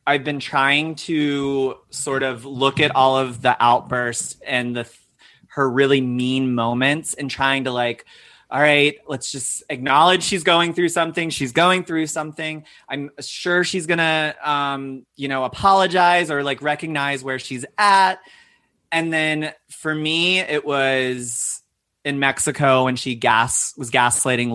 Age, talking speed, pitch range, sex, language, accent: 30-49, 155 wpm, 125-150 Hz, male, English, American